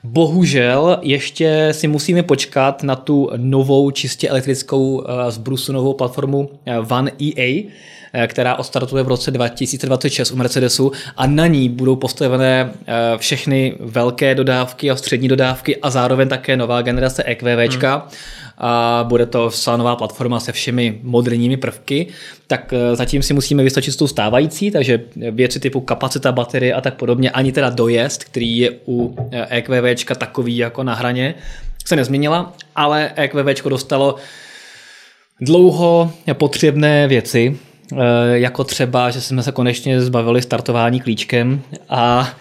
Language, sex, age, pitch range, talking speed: Czech, male, 20-39, 120-140 Hz, 130 wpm